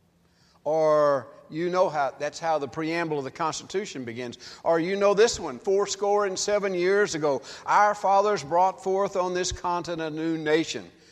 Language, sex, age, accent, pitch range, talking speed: English, male, 60-79, American, 150-195 Hz, 180 wpm